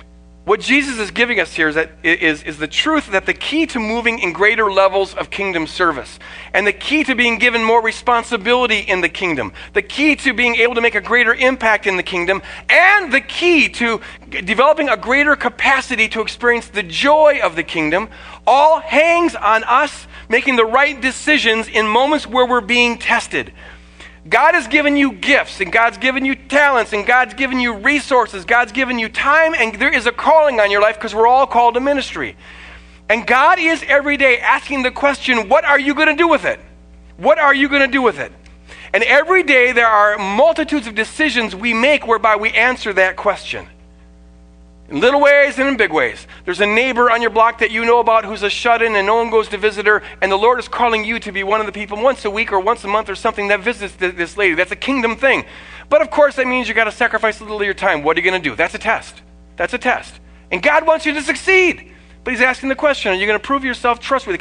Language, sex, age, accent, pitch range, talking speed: English, male, 40-59, American, 200-270 Hz, 230 wpm